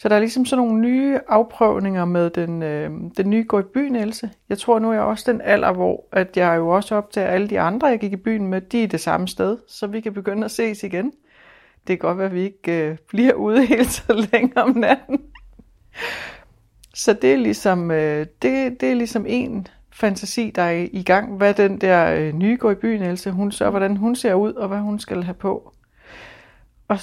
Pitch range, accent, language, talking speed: 185-225 Hz, native, Danish, 225 wpm